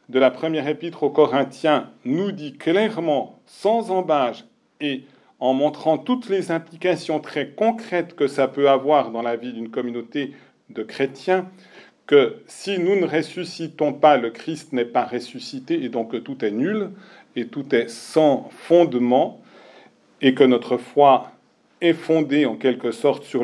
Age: 40-59